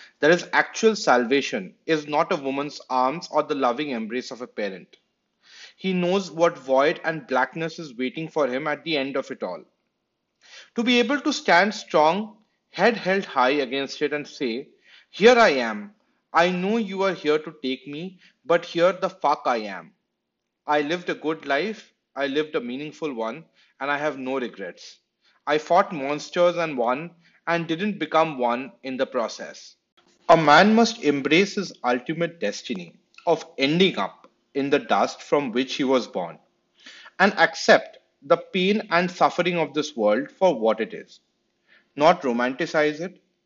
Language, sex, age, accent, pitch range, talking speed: English, male, 30-49, Indian, 135-180 Hz, 170 wpm